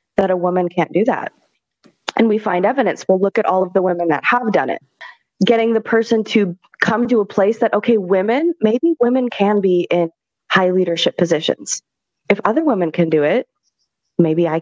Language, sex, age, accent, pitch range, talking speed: English, female, 20-39, American, 185-235 Hz, 195 wpm